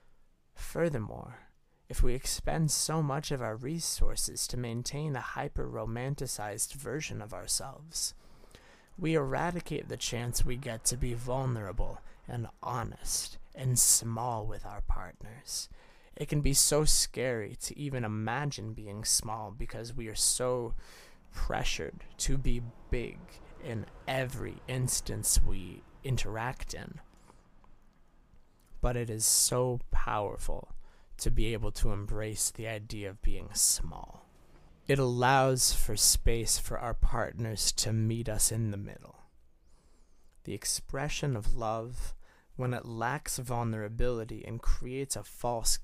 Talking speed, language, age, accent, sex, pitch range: 125 wpm, English, 20-39, American, male, 105-130 Hz